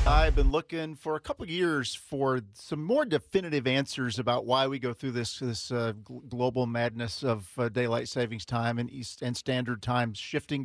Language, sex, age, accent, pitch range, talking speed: English, male, 50-69, American, 120-140 Hz, 195 wpm